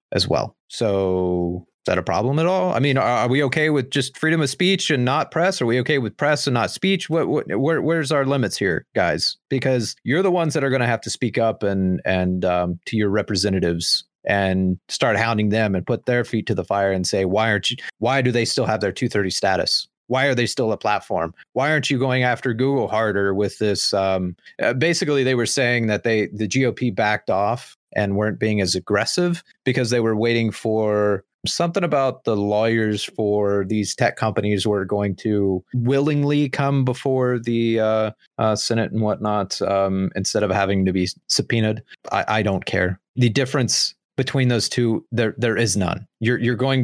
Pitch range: 105-130 Hz